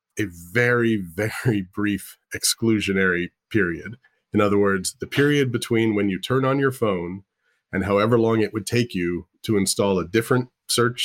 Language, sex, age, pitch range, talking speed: English, male, 30-49, 95-125 Hz, 165 wpm